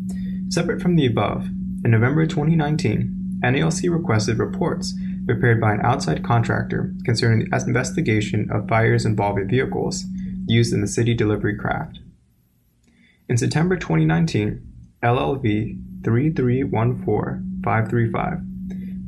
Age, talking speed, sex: 20-39, 105 wpm, male